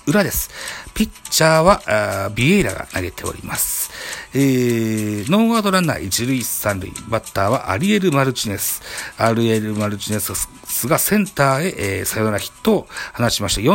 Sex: male